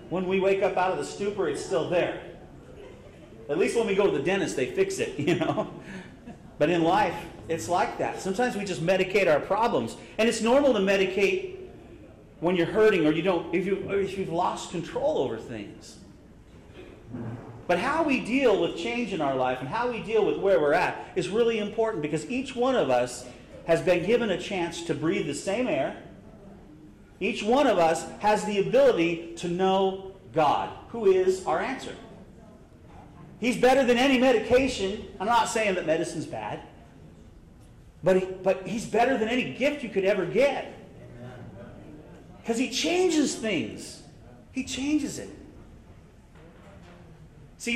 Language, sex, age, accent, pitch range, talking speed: English, male, 40-59, American, 170-240 Hz, 170 wpm